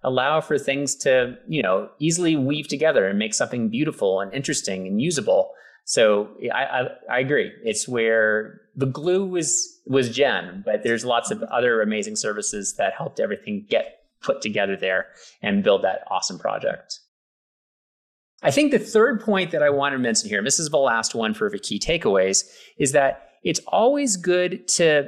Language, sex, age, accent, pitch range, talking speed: English, male, 30-49, American, 120-195 Hz, 180 wpm